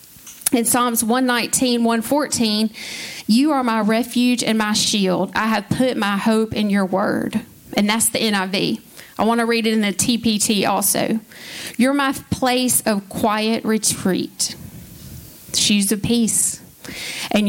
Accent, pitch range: American, 195-235 Hz